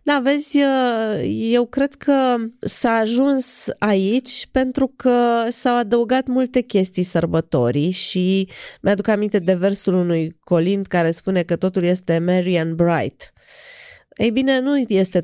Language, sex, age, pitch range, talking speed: Romanian, female, 20-39, 160-215 Hz, 130 wpm